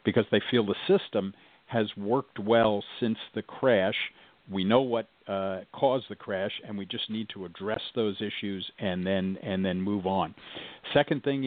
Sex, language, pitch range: male, English, 95-115 Hz